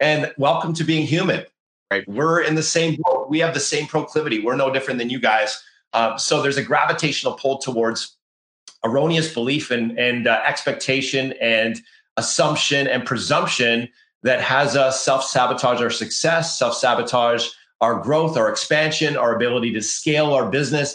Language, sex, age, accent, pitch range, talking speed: English, male, 30-49, American, 120-150 Hz, 160 wpm